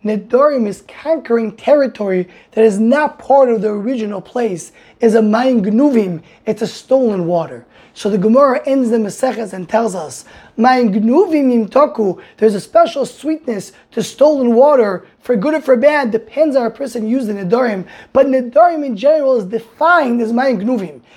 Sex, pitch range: male, 210-270 Hz